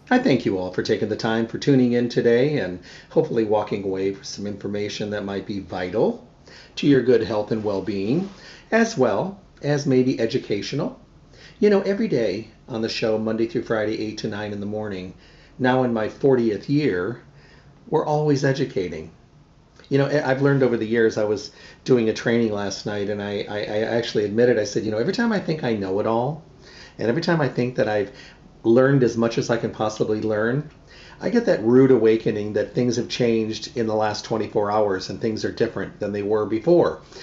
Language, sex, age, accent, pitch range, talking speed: English, male, 40-59, American, 110-135 Hz, 205 wpm